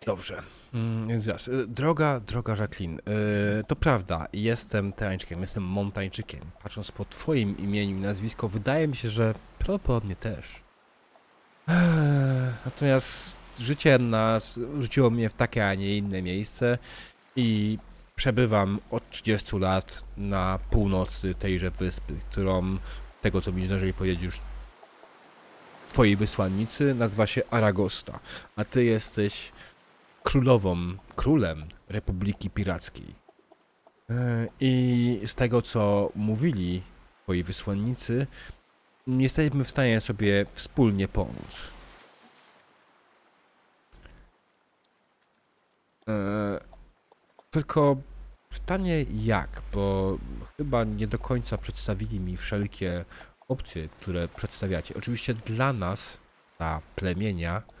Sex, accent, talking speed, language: male, native, 100 wpm, Polish